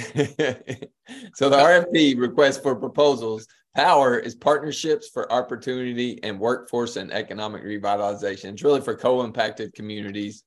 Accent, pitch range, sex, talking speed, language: American, 115-150 Hz, male, 120 wpm, English